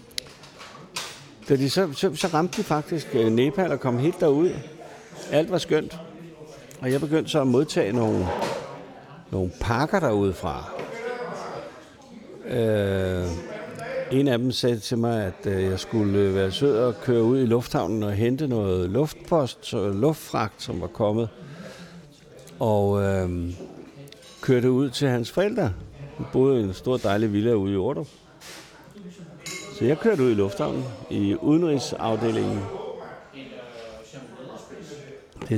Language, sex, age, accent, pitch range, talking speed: Danish, male, 60-79, native, 105-150 Hz, 130 wpm